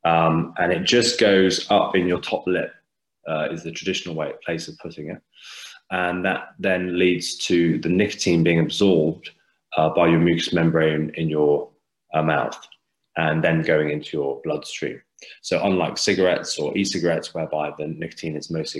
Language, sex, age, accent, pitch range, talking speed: English, male, 20-39, British, 80-95 Hz, 170 wpm